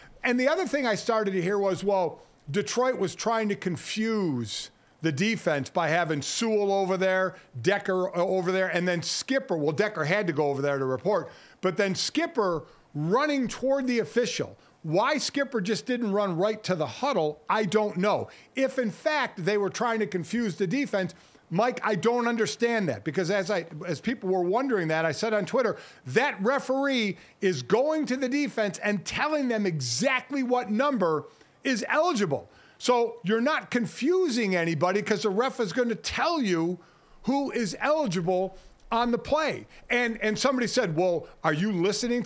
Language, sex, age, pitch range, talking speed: English, male, 50-69, 185-245 Hz, 175 wpm